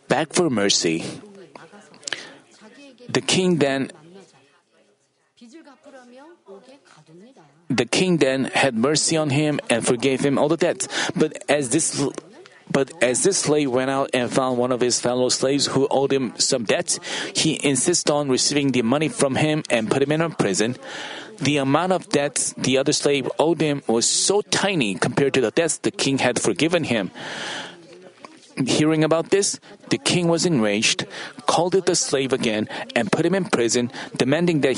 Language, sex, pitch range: Korean, male, 135-170 Hz